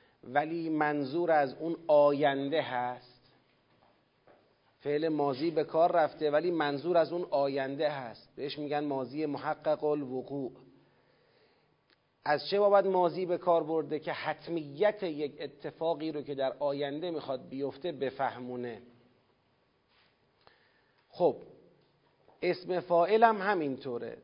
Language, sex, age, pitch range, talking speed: Persian, male, 40-59, 145-180 Hz, 110 wpm